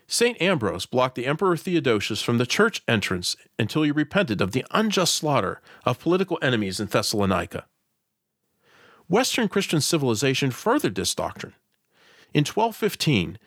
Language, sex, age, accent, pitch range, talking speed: English, male, 40-59, American, 110-175 Hz, 135 wpm